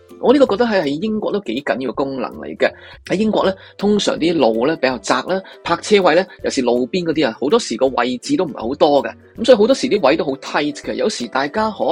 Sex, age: male, 20-39